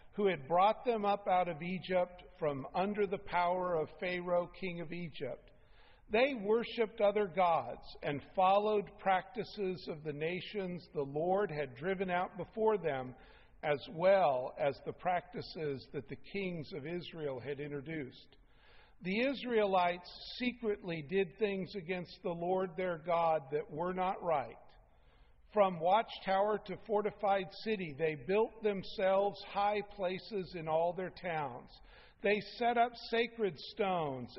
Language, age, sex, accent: English, 50-69, male, American